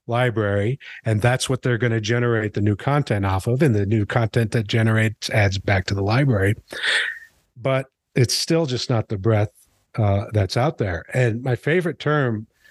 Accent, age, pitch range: American, 50-69, 110-135 Hz